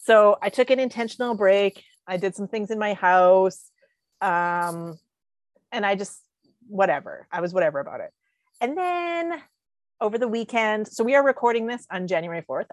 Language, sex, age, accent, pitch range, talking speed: English, female, 30-49, American, 180-245 Hz, 170 wpm